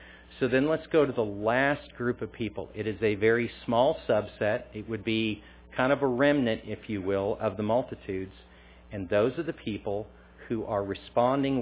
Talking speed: 190 wpm